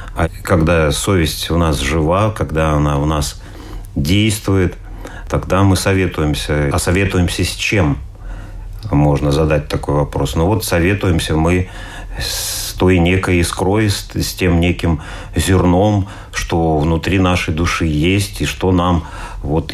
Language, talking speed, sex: Russian, 130 wpm, male